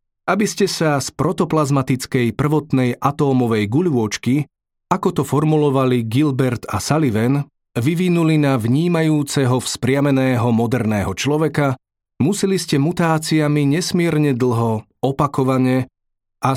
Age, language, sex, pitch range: 30-49, Slovak, male, 120-155 Hz